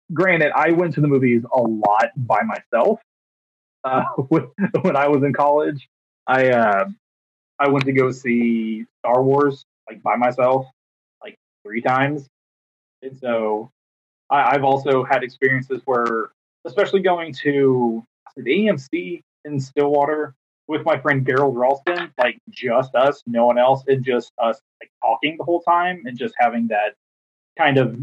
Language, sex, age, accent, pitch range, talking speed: English, male, 20-39, American, 125-150 Hz, 150 wpm